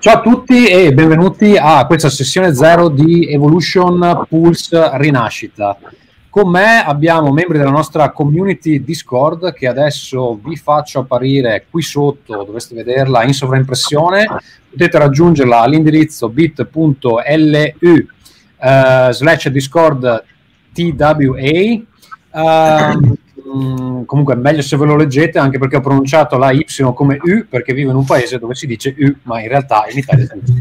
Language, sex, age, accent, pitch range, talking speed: Italian, male, 30-49, native, 125-160 Hz, 135 wpm